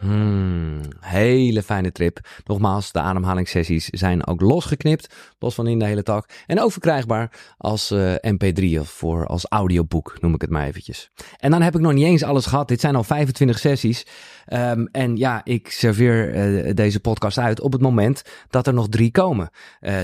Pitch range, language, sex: 100-140 Hz, Dutch, male